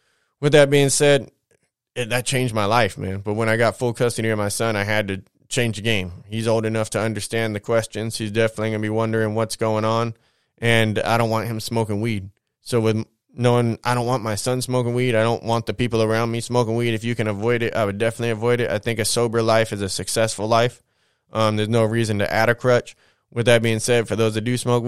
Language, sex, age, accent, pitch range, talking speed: English, male, 20-39, American, 110-125 Hz, 250 wpm